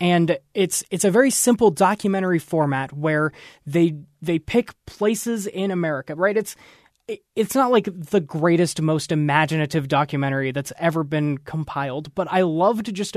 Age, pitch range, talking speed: 20-39, 155-195 Hz, 150 wpm